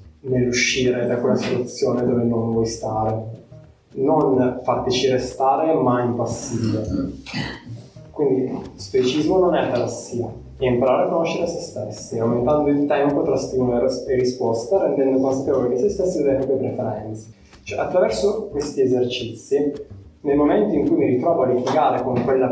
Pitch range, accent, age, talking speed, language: 120-150 Hz, native, 20-39, 150 wpm, Italian